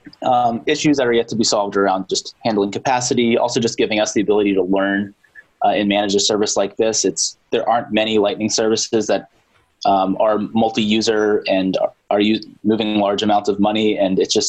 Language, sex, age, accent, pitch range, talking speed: English, male, 20-39, American, 100-115 Hz, 200 wpm